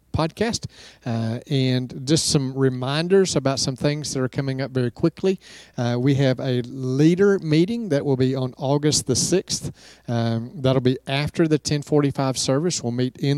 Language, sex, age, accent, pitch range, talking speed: English, male, 40-59, American, 130-160 Hz, 165 wpm